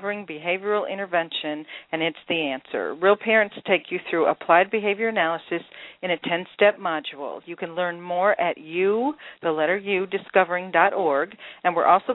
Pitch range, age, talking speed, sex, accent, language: 165-195 Hz, 50-69, 155 wpm, female, American, English